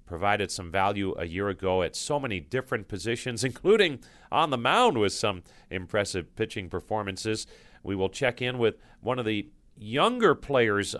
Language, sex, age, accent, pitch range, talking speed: English, male, 40-59, American, 95-120 Hz, 165 wpm